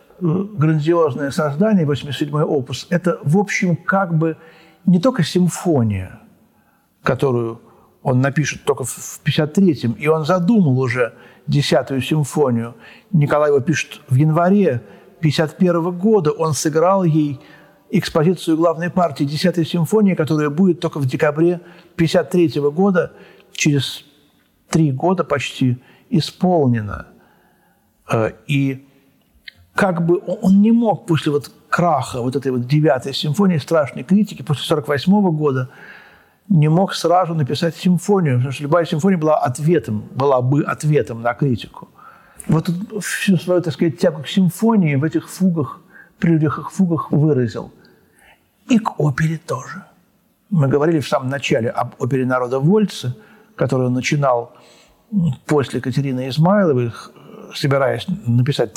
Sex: male